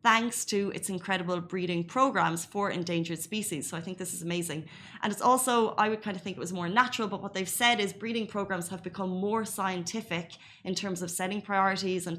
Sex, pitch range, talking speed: female, 180-210 Hz, 215 wpm